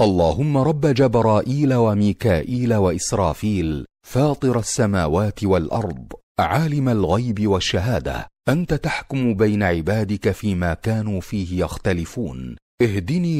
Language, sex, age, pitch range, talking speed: Arabic, male, 40-59, 90-125 Hz, 90 wpm